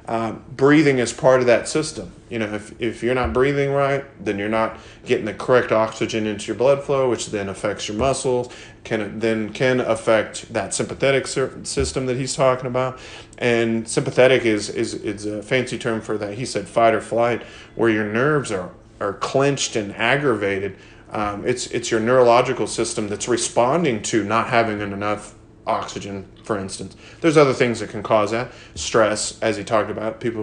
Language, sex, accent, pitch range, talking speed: English, male, American, 110-130 Hz, 185 wpm